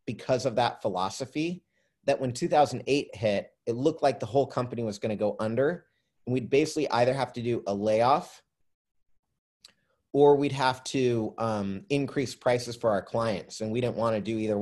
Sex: male